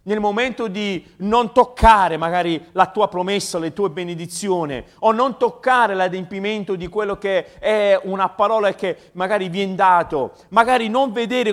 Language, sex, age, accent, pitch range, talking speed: Italian, male, 40-59, native, 175-235 Hz, 155 wpm